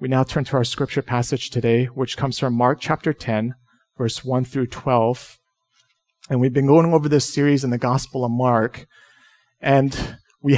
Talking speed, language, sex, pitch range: 180 wpm, English, male, 125-175 Hz